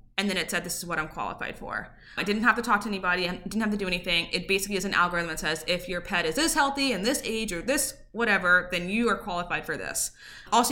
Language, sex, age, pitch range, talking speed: English, female, 20-39, 180-225 Hz, 275 wpm